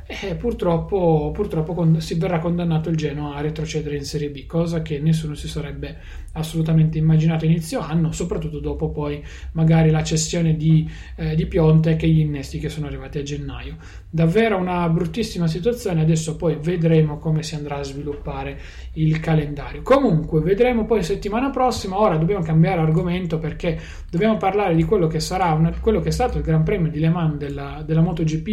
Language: Italian